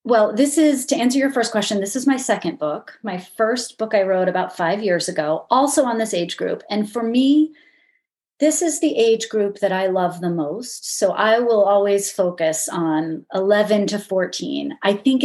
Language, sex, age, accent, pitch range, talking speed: English, female, 30-49, American, 185-230 Hz, 200 wpm